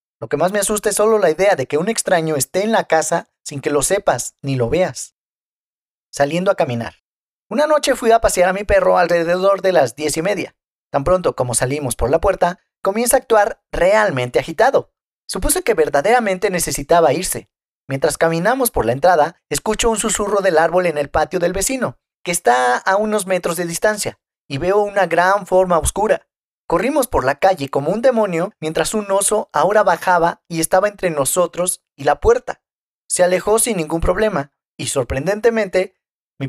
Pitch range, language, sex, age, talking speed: 150-210 Hz, Spanish, male, 40-59, 185 wpm